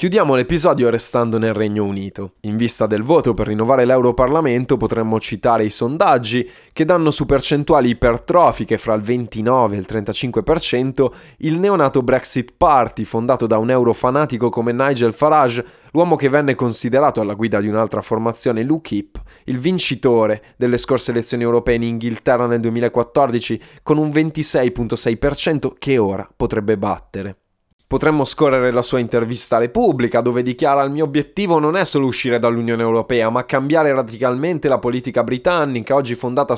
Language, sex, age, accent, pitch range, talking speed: Italian, male, 20-39, native, 110-140 Hz, 150 wpm